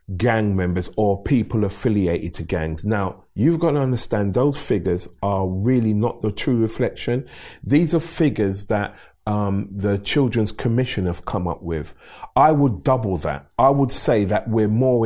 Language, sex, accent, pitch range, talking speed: English, male, British, 95-125 Hz, 165 wpm